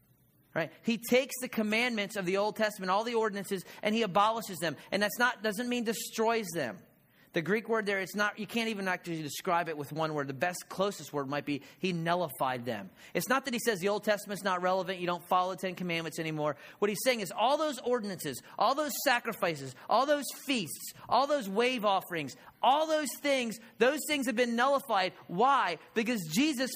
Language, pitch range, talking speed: English, 205-265 Hz, 205 wpm